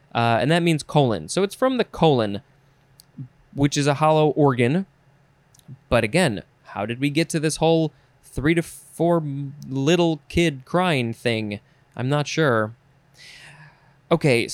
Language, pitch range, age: English, 130-155 Hz, 20-39